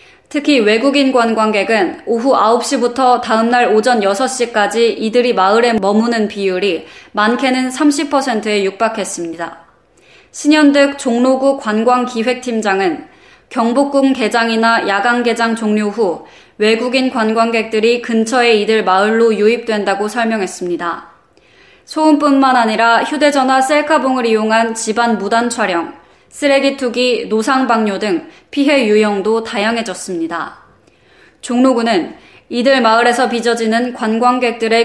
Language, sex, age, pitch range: Korean, female, 20-39, 215-255 Hz